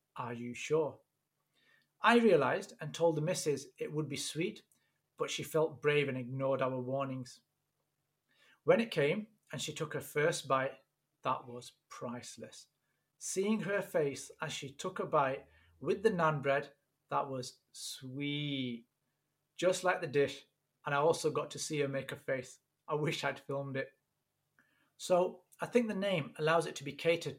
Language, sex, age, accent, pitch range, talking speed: English, male, 30-49, British, 135-175 Hz, 170 wpm